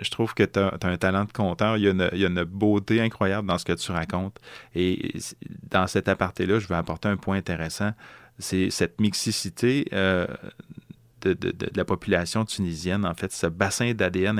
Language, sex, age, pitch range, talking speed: French, male, 30-49, 90-105 Hz, 195 wpm